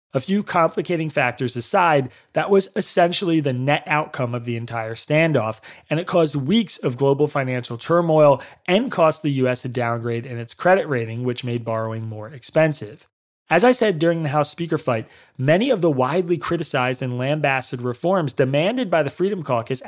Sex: male